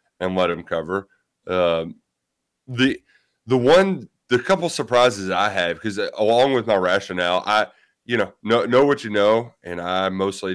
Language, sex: English, male